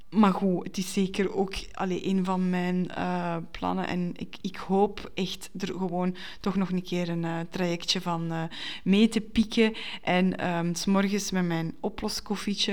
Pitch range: 170-205 Hz